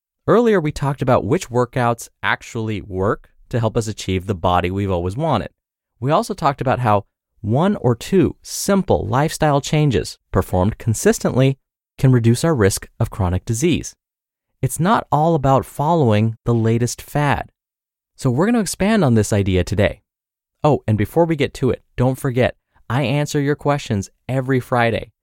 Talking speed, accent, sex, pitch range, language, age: 165 wpm, American, male, 105-150 Hz, English, 30-49